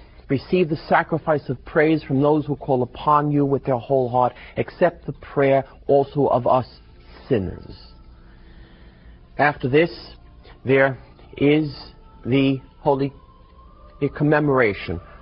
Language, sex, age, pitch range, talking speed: English, male, 40-59, 115-145 Hz, 115 wpm